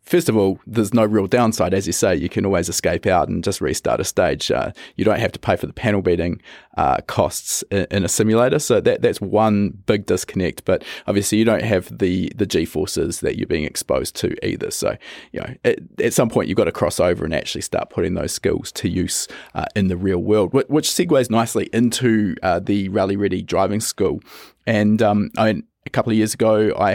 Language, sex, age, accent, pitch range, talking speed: English, male, 20-39, Australian, 100-110 Hz, 225 wpm